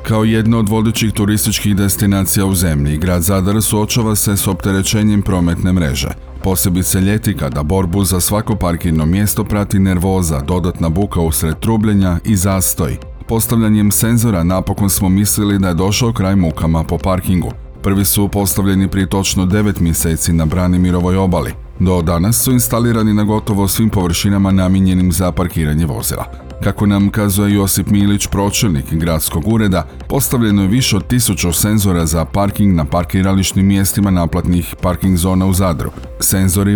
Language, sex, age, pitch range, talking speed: Croatian, male, 40-59, 90-100 Hz, 150 wpm